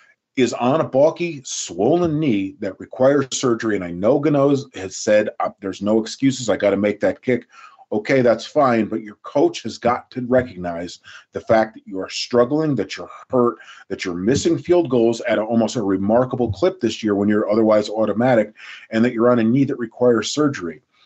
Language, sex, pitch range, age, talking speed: English, male, 105-130 Hz, 40-59, 195 wpm